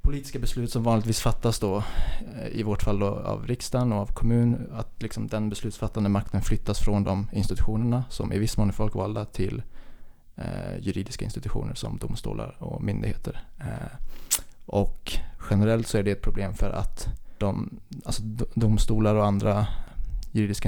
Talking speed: 155 wpm